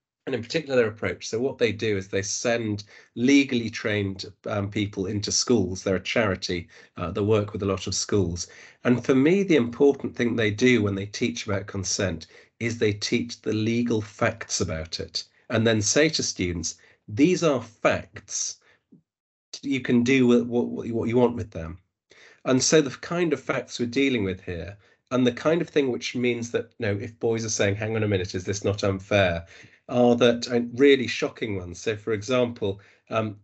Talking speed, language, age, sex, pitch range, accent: 195 wpm, English, 40-59, male, 100-120 Hz, British